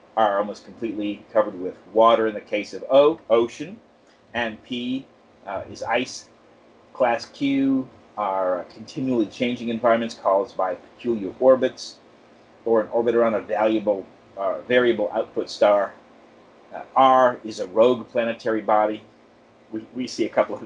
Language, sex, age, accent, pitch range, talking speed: English, male, 40-59, American, 105-120 Hz, 145 wpm